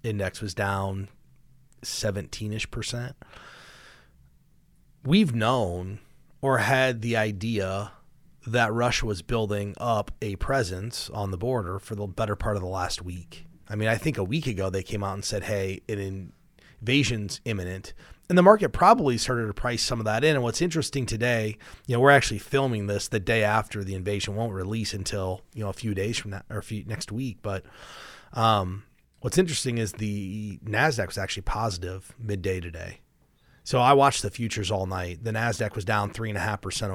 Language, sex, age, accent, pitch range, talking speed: English, male, 30-49, American, 100-125 Hz, 180 wpm